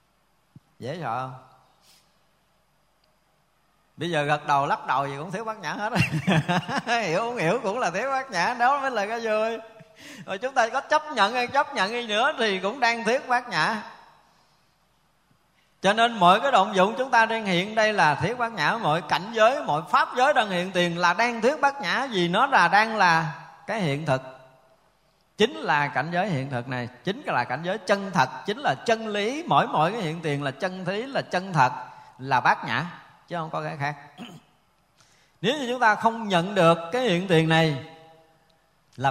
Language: Vietnamese